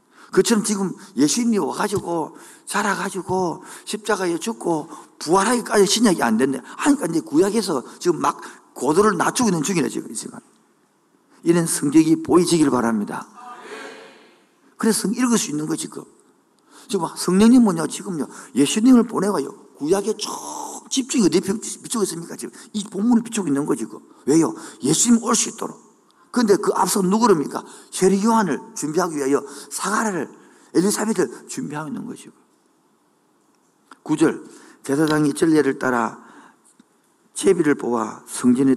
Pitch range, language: 160-230 Hz, Korean